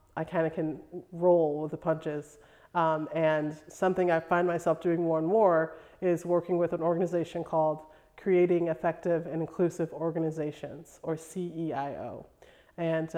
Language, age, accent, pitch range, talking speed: English, 30-49, American, 155-170 Hz, 145 wpm